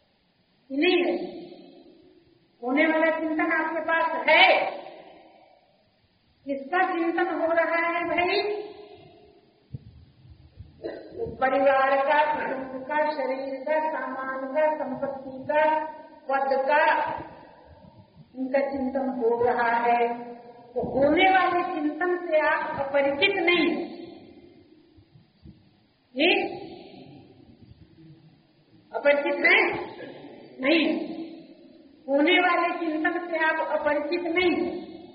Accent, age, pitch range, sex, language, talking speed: native, 50-69, 275-340 Hz, female, Hindi, 85 wpm